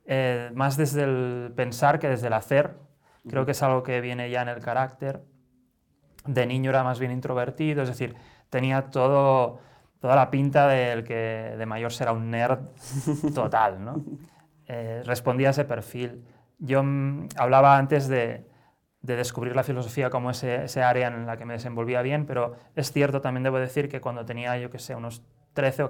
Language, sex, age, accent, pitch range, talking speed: Spanish, male, 20-39, Spanish, 115-130 Hz, 185 wpm